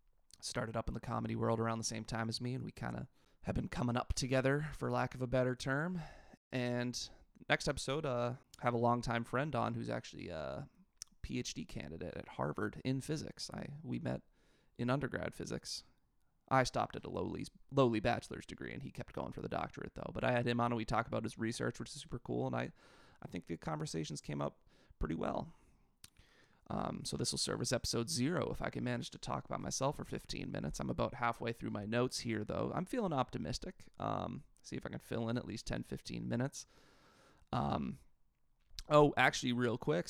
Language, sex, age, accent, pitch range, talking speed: English, male, 20-39, American, 110-125 Hz, 210 wpm